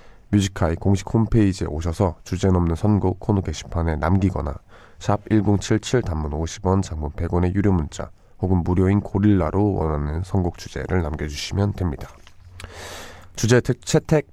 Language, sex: Korean, male